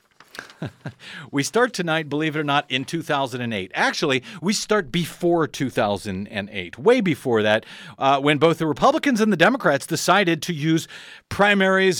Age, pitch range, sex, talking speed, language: 40-59, 130-165 Hz, male, 145 wpm, English